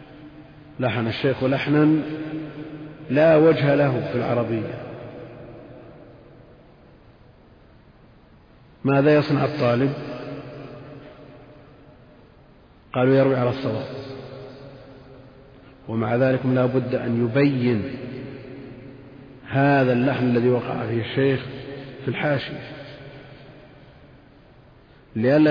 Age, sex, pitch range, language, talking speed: 50-69, male, 120-150 Hz, Arabic, 70 wpm